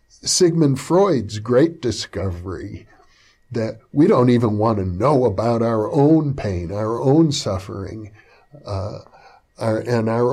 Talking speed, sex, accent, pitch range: 120 wpm, male, American, 105-140 Hz